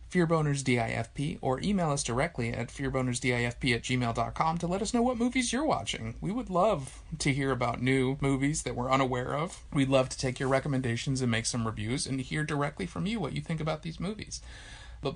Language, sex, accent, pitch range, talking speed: English, male, American, 115-155 Hz, 200 wpm